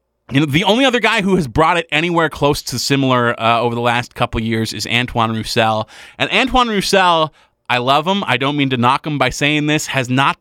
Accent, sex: American, male